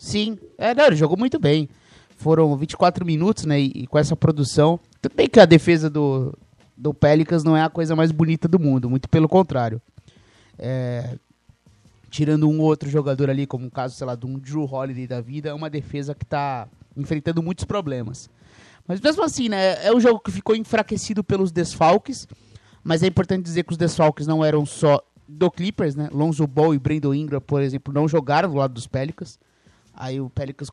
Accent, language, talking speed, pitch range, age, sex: Brazilian, English, 195 wpm, 140-185 Hz, 20-39, male